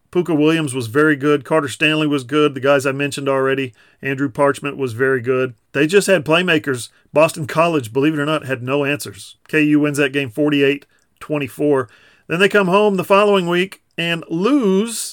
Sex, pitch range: male, 135-160 Hz